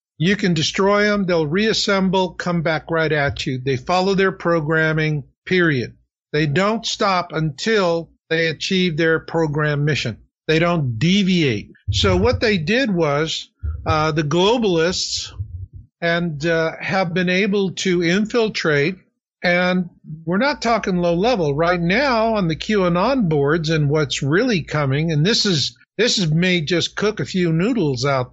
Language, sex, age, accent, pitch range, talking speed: English, male, 50-69, American, 140-185 Hz, 150 wpm